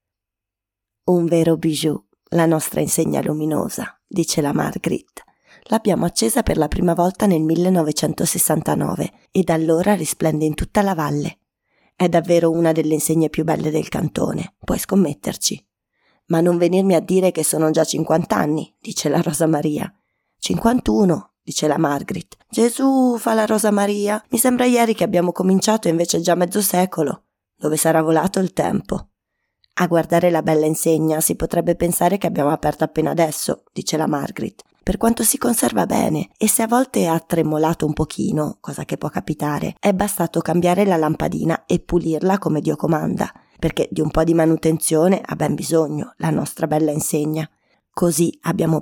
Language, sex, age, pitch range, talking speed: Italian, female, 20-39, 155-185 Hz, 165 wpm